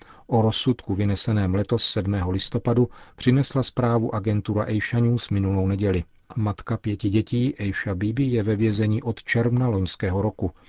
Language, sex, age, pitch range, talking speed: Czech, male, 40-59, 100-115 Hz, 140 wpm